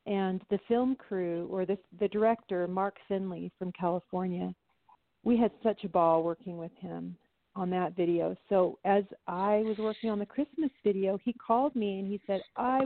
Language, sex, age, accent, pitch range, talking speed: English, female, 40-59, American, 180-210 Hz, 180 wpm